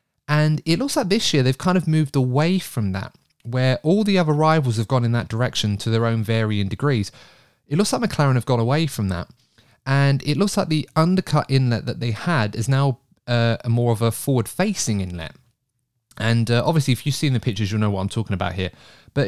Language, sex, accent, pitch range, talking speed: English, male, British, 110-140 Hz, 220 wpm